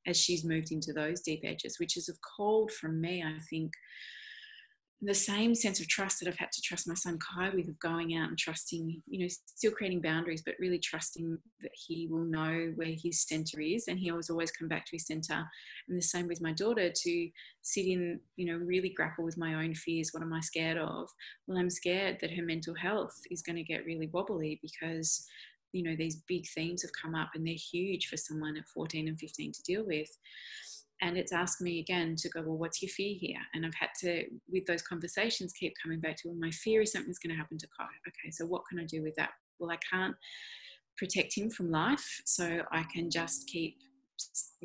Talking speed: 225 wpm